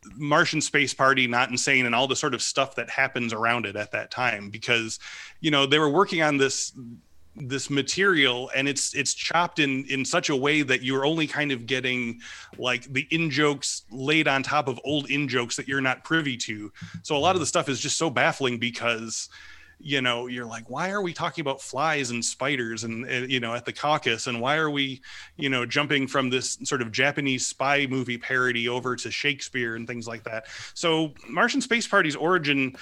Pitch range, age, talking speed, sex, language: 120-145 Hz, 30-49, 210 wpm, male, English